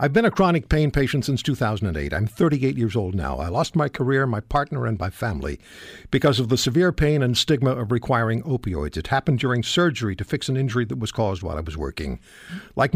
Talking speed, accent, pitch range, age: 220 wpm, American, 120-155 Hz, 60-79